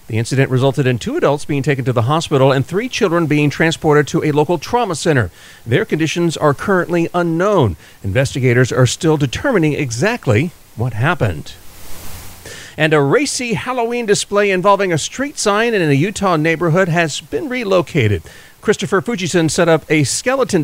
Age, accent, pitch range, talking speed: 40-59, American, 130-175 Hz, 160 wpm